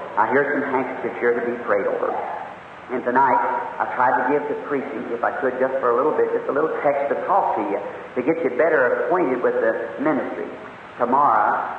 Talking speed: 215 wpm